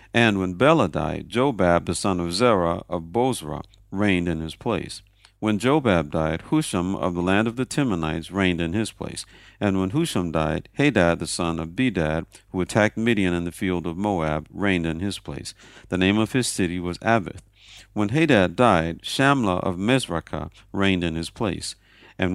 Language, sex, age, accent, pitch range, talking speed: English, male, 50-69, American, 85-110 Hz, 185 wpm